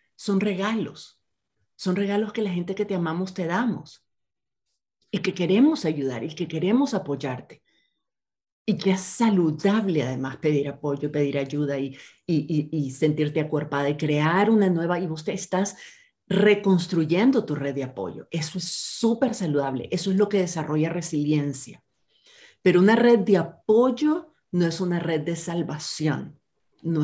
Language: Spanish